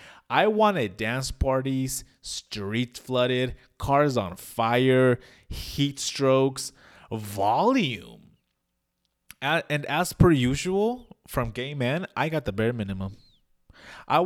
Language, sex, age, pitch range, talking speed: English, male, 20-39, 95-135 Hz, 105 wpm